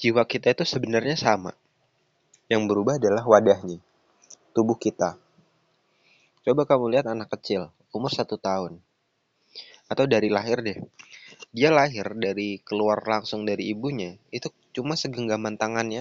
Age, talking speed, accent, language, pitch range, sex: 20-39, 125 wpm, native, Indonesian, 105-150 Hz, male